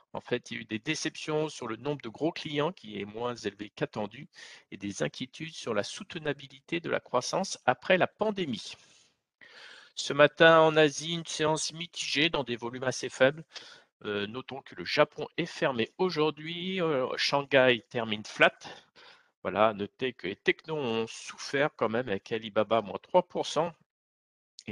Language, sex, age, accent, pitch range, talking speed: French, male, 50-69, French, 115-155 Hz, 165 wpm